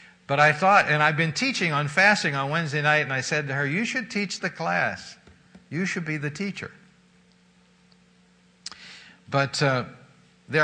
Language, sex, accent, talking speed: English, male, American, 170 wpm